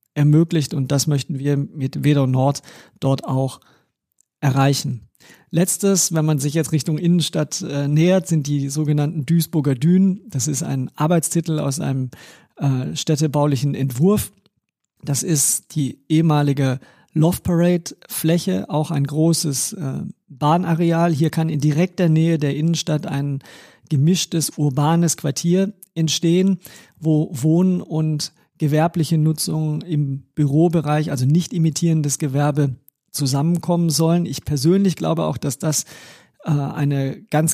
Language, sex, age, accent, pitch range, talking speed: German, male, 50-69, German, 145-165 Hz, 125 wpm